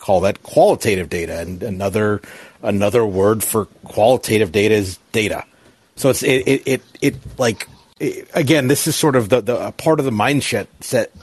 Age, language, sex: 40-59, English, male